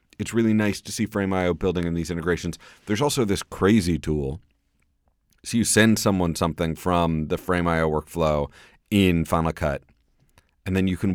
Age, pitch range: 30-49, 75-95 Hz